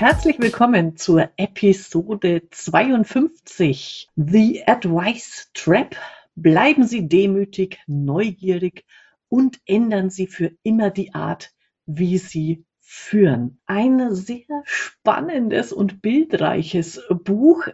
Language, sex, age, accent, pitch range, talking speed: German, female, 50-69, German, 165-220 Hz, 95 wpm